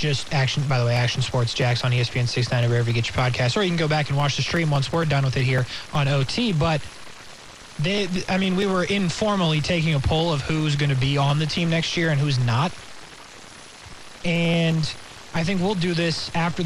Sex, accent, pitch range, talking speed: male, American, 135-175 Hz, 230 wpm